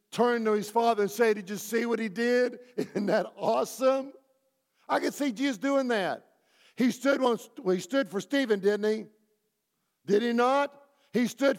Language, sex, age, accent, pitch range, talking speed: English, male, 50-69, American, 185-235 Hz, 185 wpm